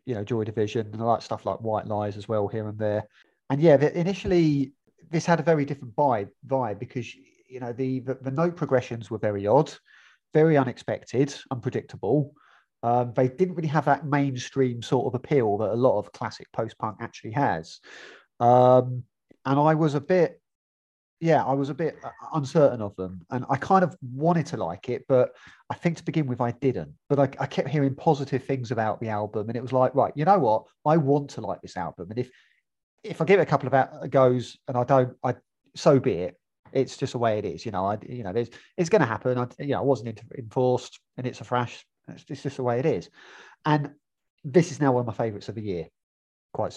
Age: 30-49